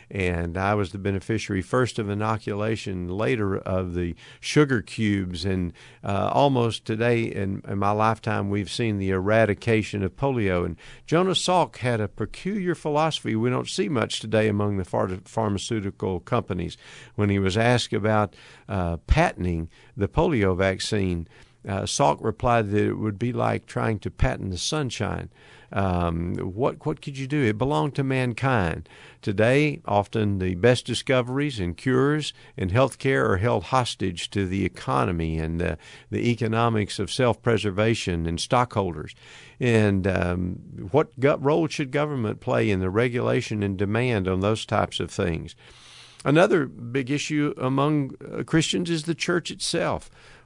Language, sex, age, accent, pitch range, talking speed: English, male, 50-69, American, 95-130 Hz, 150 wpm